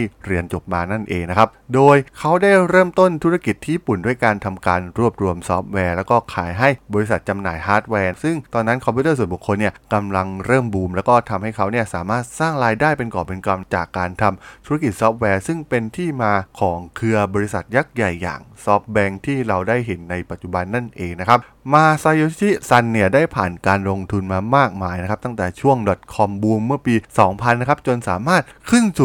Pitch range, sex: 100-130 Hz, male